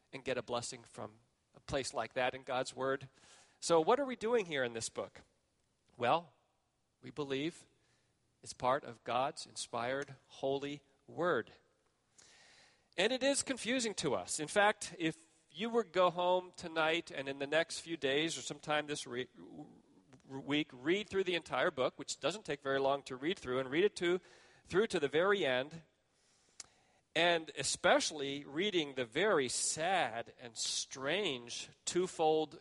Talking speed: 160 wpm